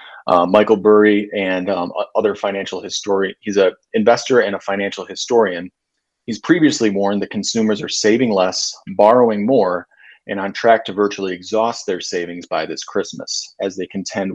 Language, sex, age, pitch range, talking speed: English, male, 30-49, 95-110 Hz, 165 wpm